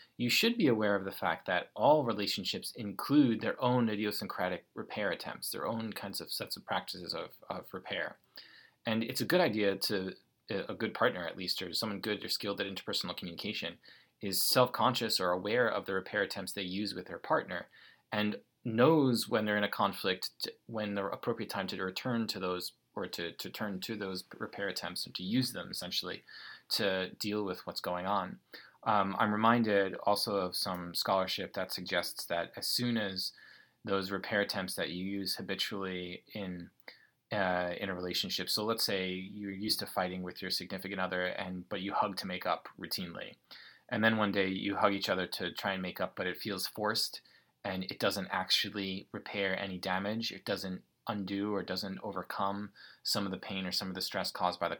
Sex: male